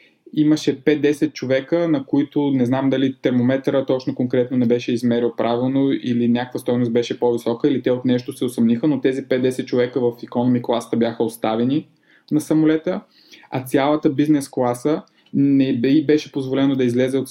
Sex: male